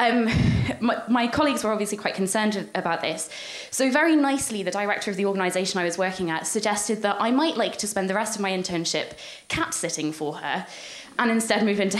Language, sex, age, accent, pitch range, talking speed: English, female, 20-39, British, 180-225 Hz, 205 wpm